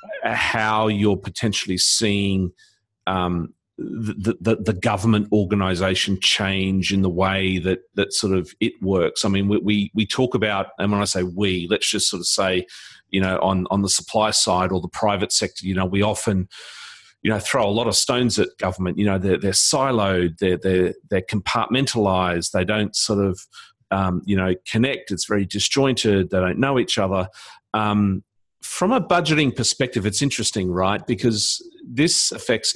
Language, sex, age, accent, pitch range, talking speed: English, male, 40-59, Australian, 95-110 Hz, 180 wpm